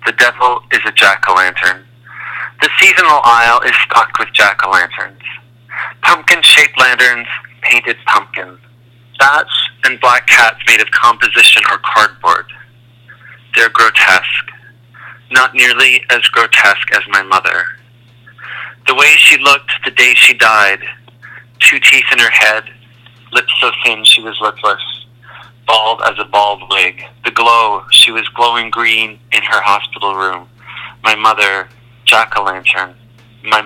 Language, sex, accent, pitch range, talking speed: English, male, American, 110-125 Hz, 135 wpm